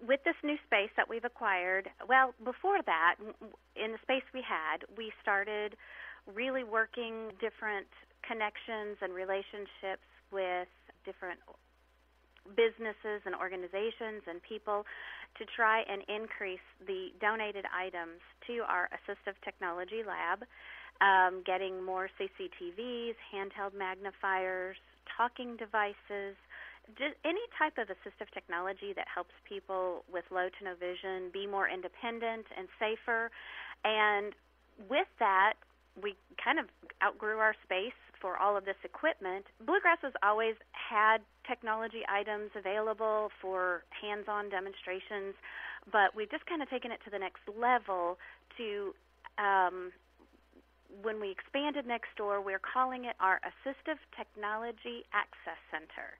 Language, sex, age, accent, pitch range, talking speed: English, female, 30-49, American, 190-235 Hz, 125 wpm